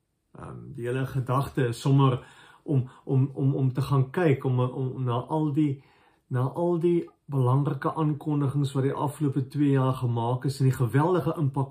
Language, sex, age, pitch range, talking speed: English, male, 50-69, 125-160 Hz, 165 wpm